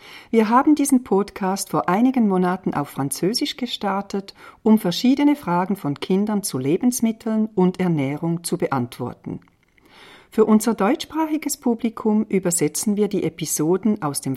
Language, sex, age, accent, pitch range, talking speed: French, female, 50-69, German, 160-240 Hz, 130 wpm